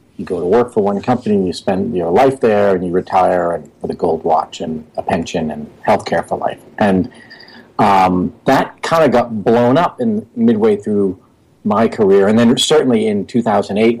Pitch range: 100-145 Hz